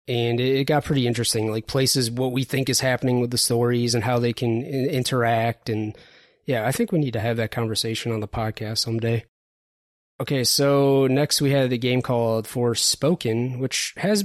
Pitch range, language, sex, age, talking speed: 115-135 Hz, English, male, 20-39, 190 wpm